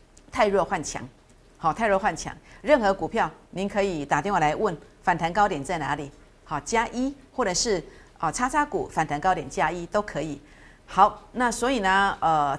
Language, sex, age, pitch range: Chinese, female, 50-69, 160-245 Hz